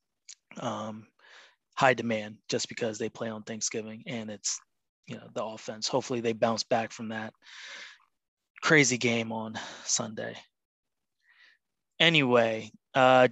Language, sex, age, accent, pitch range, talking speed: English, male, 20-39, American, 115-135 Hz, 120 wpm